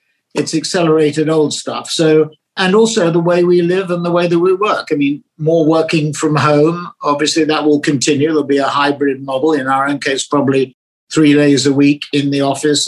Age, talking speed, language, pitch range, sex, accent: 50-69, 205 wpm, English, 145-165 Hz, male, British